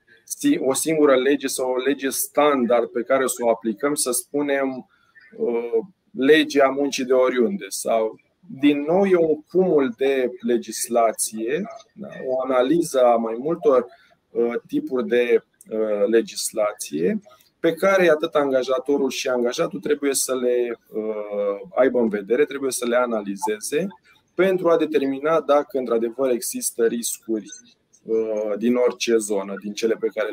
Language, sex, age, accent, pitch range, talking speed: Romanian, male, 20-39, native, 120-165 Hz, 130 wpm